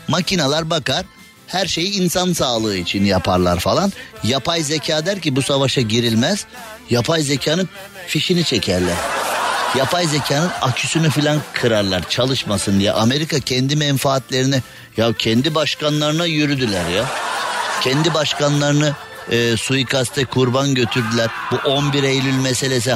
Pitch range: 115-150 Hz